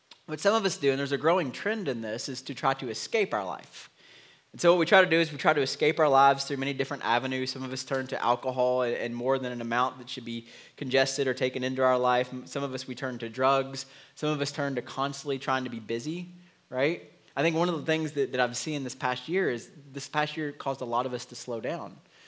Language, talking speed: English, 270 wpm